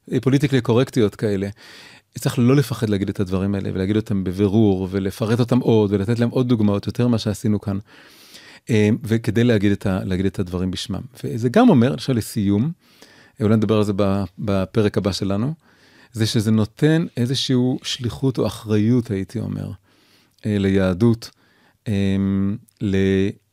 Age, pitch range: 30-49, 100-120 Hz